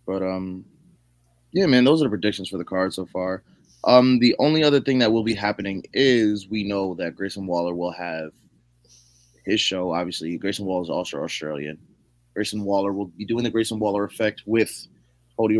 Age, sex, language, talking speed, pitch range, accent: 20-39, male, English, 190 wpm, 80-115 Hz, American